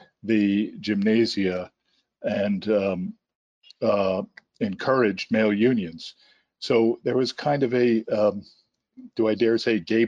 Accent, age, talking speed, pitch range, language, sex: American, 50-69, 120 wpm, 100-120 Hz, English, male